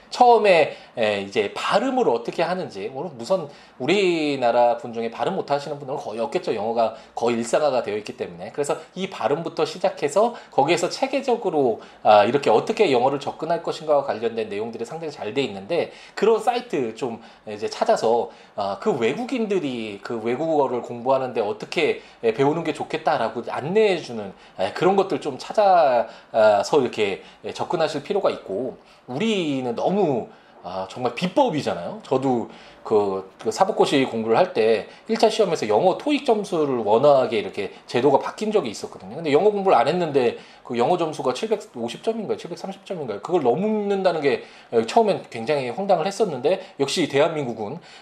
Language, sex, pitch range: Korean, male, 135-225 Hz